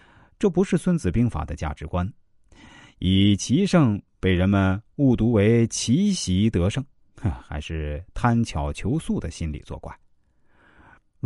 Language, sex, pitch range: Chinese, male, 90-135 Hz